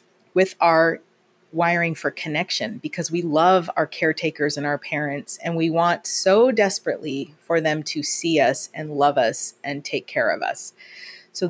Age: 30-49